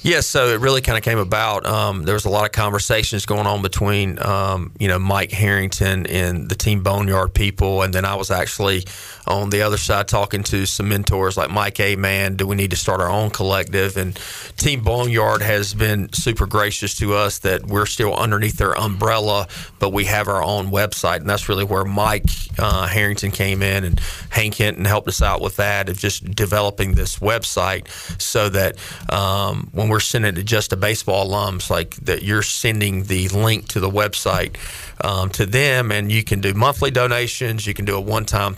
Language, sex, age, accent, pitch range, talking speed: English, male, 40-59, American, 95-105 Hz, 205 wpm